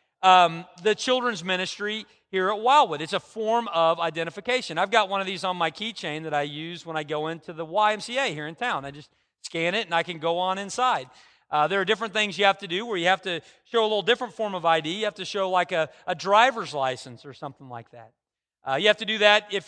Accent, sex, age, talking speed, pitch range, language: American, male, 40-59, 250 wpm, 165-215 Hz, English